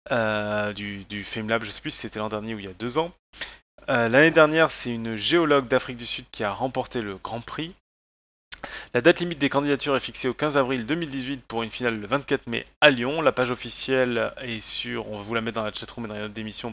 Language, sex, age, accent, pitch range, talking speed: French, male, 20-39, French, 110-140 Hz, 250 wpm